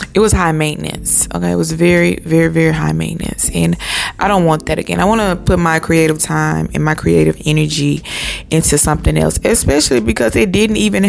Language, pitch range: English, 150-185 Hz